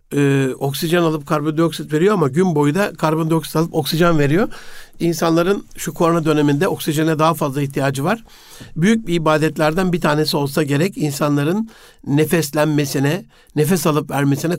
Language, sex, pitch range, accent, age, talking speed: Turkish, male, 145-180 Hz, native, 60-79, 140 wpm